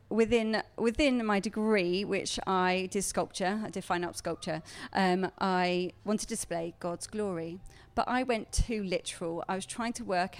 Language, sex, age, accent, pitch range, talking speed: English, female, 30-49, British, 185-250 Hz, 175 wpm